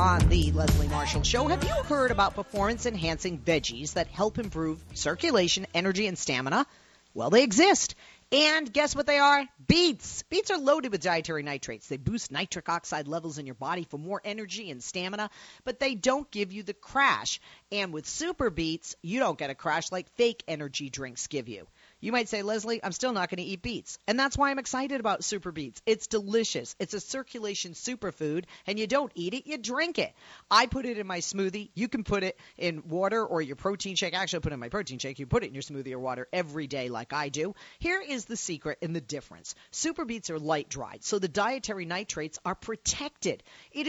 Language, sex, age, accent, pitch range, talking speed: English, female, 40-59, American, 155-235 Hz, 215 wpm